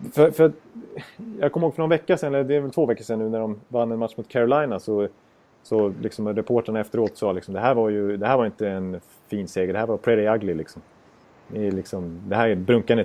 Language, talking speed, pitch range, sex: Swedish, 255 wpm, 105-145 Hz, male